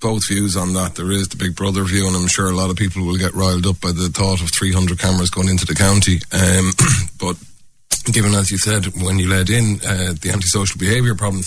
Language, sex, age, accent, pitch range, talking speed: English, male, 30-49, Irish, 95-105 Hz, 240 wpm